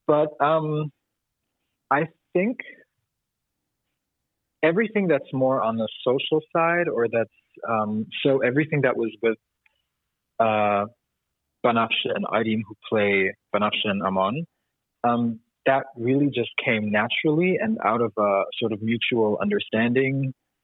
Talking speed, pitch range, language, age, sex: 120 wpm, 110-150 Hz, Danish, 30-49, male